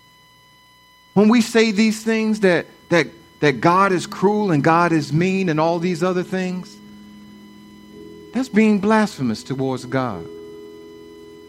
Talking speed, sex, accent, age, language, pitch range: 130 wpm, male, American, 50-69, English, 125-200 Hz